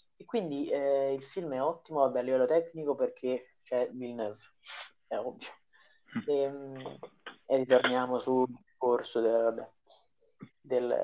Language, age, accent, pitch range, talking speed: Italian, 30-49, native, 125-150 Hz, 135 wpm